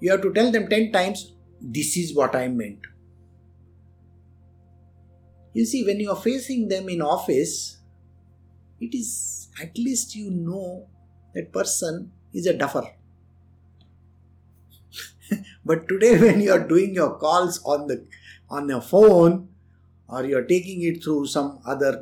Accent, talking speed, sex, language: Indian, 145 wpm, male, English